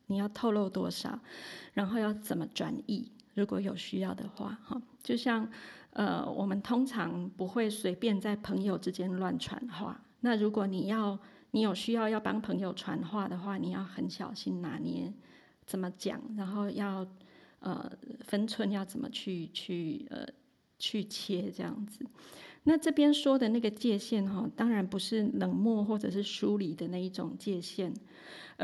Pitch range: 190-235 Hz